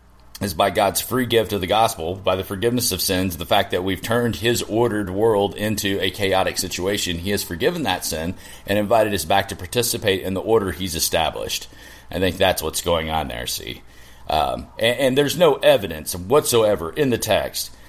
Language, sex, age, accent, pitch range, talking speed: English, male, 40-59, American, 95-110 Hz, 200 wpm